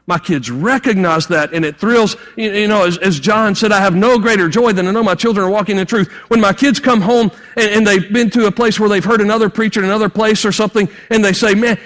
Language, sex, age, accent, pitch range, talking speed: English, male, 40-59, American, 155-235 Hz, 270 wpm